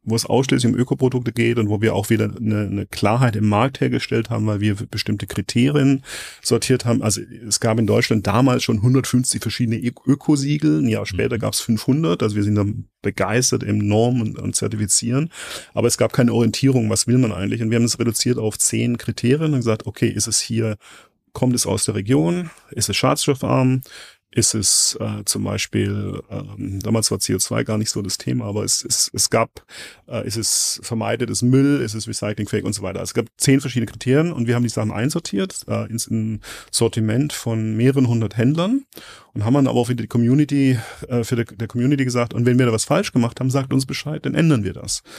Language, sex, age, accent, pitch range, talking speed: German, male, 30-49, German, 105-130 Hz, 215 wpm